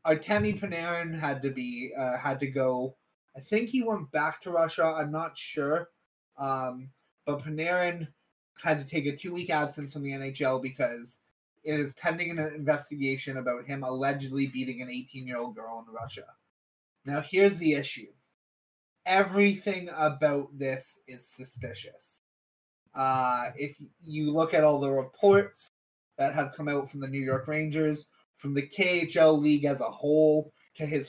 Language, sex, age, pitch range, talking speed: English, male, 20-39, 130-165 Hz, 160 wpm